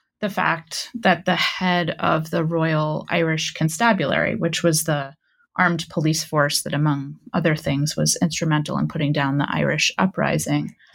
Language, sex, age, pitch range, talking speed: English, female, 20-39, 155-195 Hz, 155 wpm